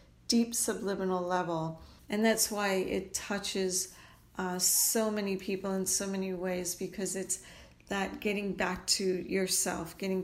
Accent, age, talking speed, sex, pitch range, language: American, 40-59, 140 wpm, female, 185-220 Hz, English